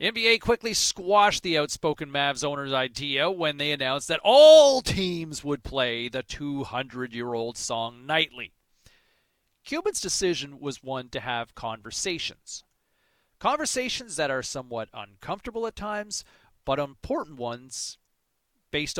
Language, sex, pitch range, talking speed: English, male, 130-210 Hz, 120 wpm